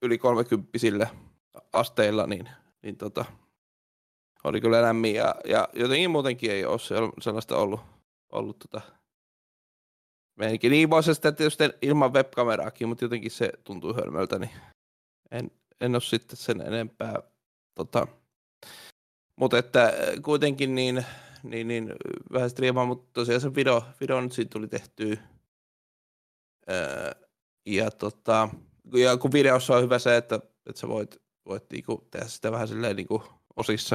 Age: 20-39